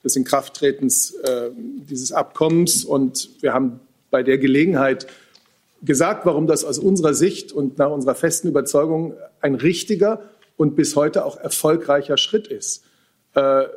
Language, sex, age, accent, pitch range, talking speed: German, male, 50-69, German, 135-175 Hz, 140 wpm